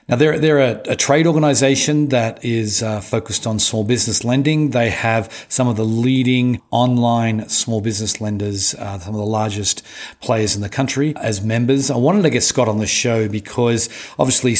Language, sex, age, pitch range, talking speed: English, male, 40-59, 110-130 Hz, 190 wpm